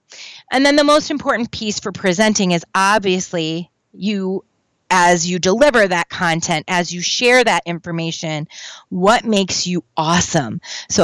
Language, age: English, 30-49